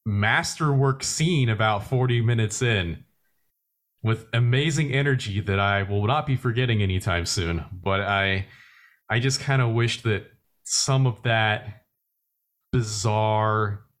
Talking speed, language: 125 wpm, English